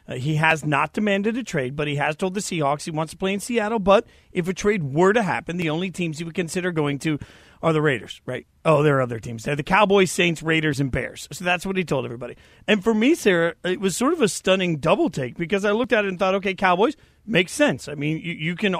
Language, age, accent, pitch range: English, 40-59, American, 155-225 Hz